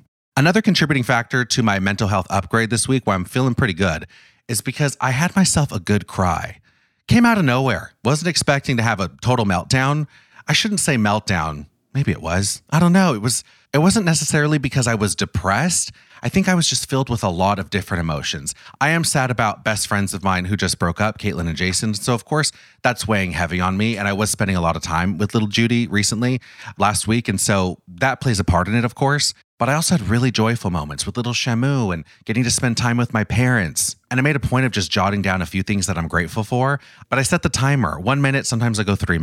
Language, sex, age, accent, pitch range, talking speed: English, male, 30-49, American, 95-130 Hz, 240 wpm